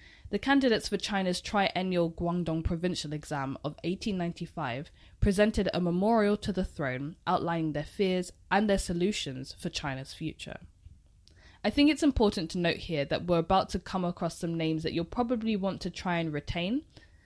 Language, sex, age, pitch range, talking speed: English, female, 10-29, 145-200 Hz, 165 wpm